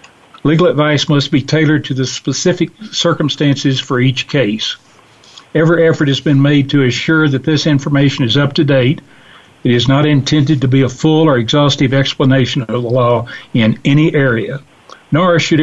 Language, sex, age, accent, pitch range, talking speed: English, male, 60-79, American, 135-155 Hz, 175 wpm